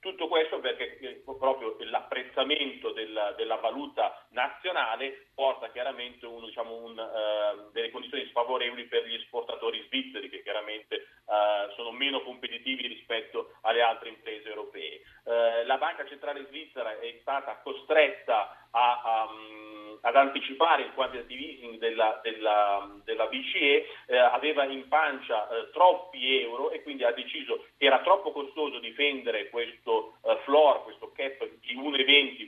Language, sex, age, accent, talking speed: Italian, male, 40-59, native, 115 wpm